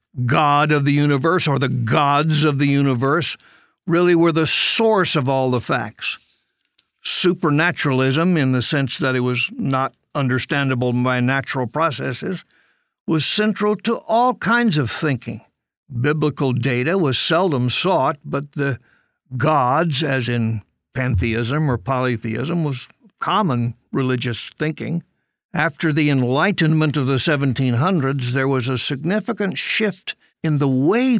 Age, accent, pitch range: 60-79, American, 130-155 Hz